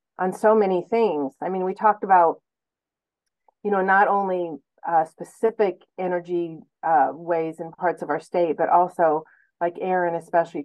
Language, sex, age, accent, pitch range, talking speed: English, female, 40-59, American, 155-180 Hz, 160 wpm